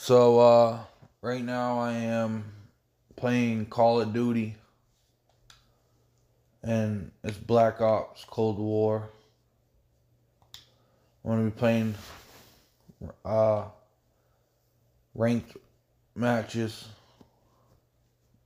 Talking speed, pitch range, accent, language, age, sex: 75 wpm, 110-120 Hz, American, English, 20-39, male